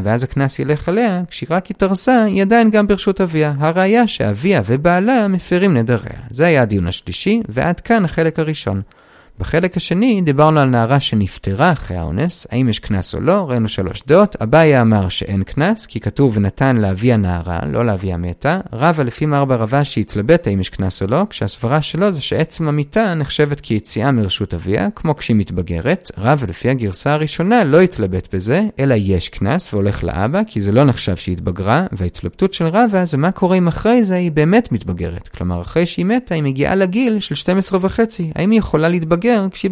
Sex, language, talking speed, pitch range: male, Hebrew, 165 wpm, 110-180 Hz